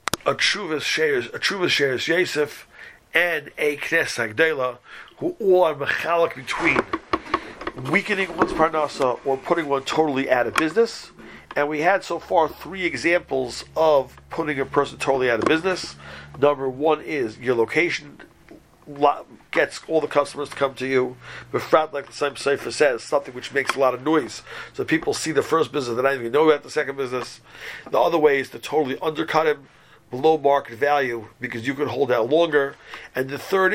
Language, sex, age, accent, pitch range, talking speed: English, male, 40-59, American, 130-160 Hz, 175 wpm